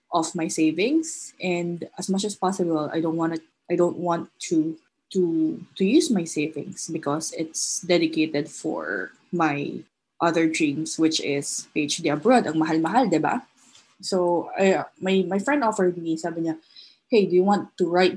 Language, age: English, 20-39